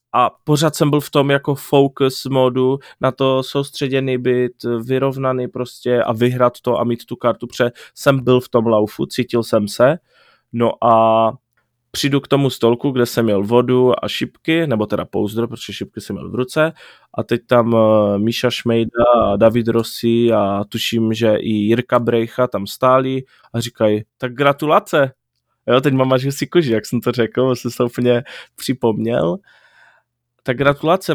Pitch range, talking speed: 115-135 Hz, 170 wpm